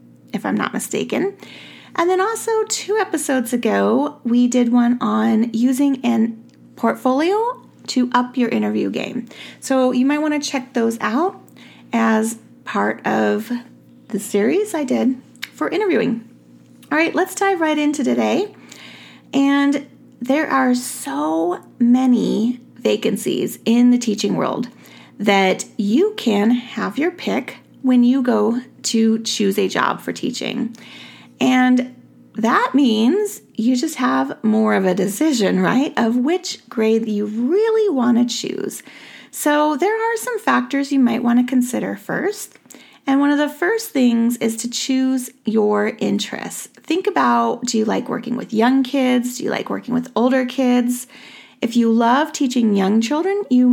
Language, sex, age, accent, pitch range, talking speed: English, female, 30-49, American, 225-285 Hz, 150 wpm